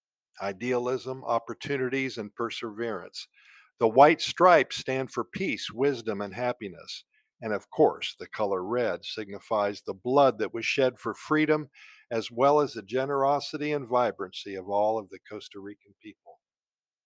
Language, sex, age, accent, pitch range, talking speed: English, male, 50-69, American, 115-145 Hz, 145 wpm